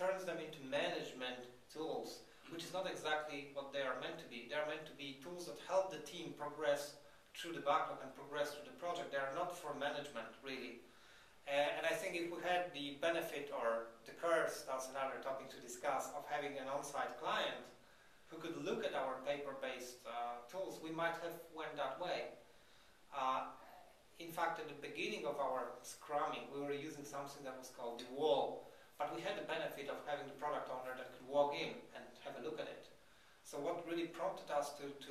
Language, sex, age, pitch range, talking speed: English, male, 30-49, 135-160 Hz, 205 wpm